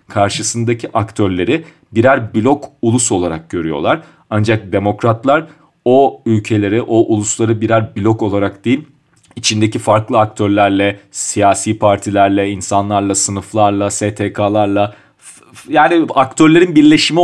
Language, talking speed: Turkish, 95 wpm